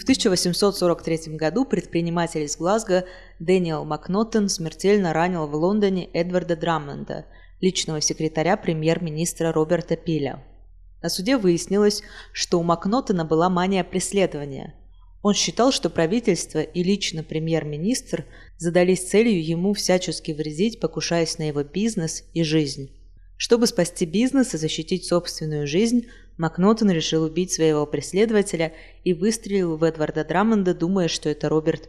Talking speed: 125 wpm